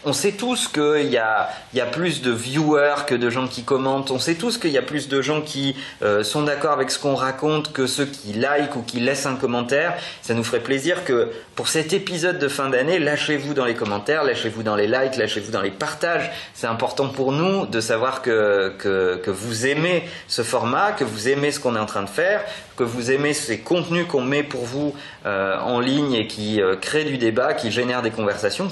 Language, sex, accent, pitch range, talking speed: French, male, French, 115-150 Hz, 225 wpm